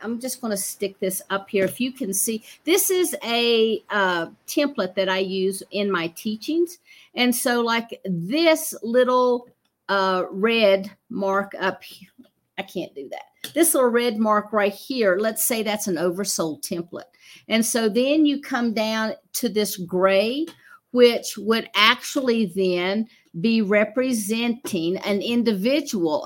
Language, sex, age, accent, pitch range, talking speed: English, female, 50-69, American, 195-245 Hz, 150 wpm